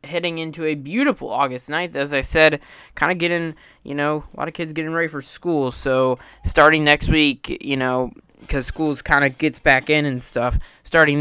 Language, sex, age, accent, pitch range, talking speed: English, male, 20-39, American, 140-195 Hz, 205 wpm